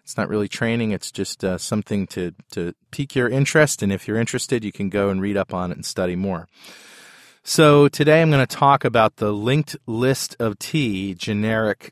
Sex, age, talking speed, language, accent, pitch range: male, 30-49, 205 wpm, English, American, 100-125 Hz